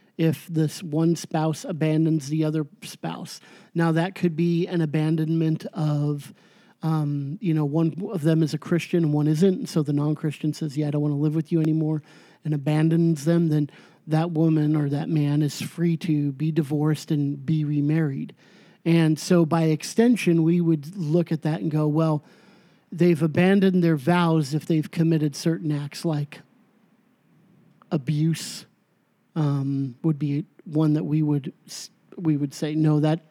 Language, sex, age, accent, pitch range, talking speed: English, male, 40-59, American, 150-175 Hz, 170 wpm